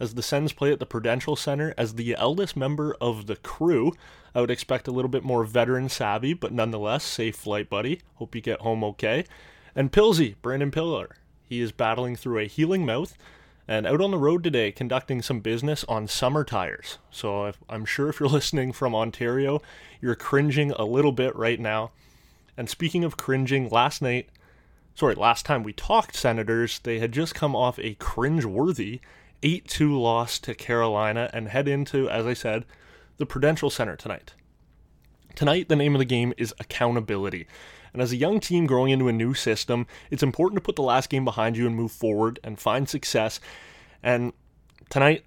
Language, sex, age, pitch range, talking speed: English, male, 20-39, 115-140 Hz, 185 wpm